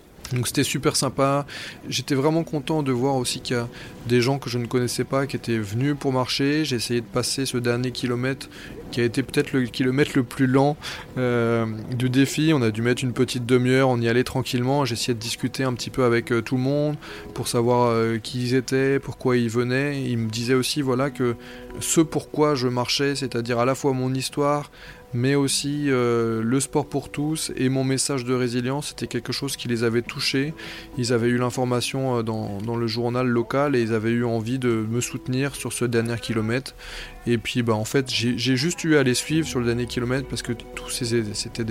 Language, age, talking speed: French, 20-39, 215 wpm